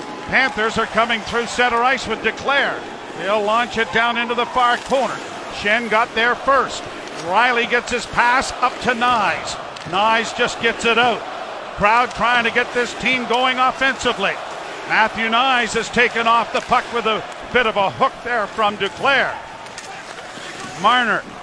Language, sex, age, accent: English, male, 50-69, American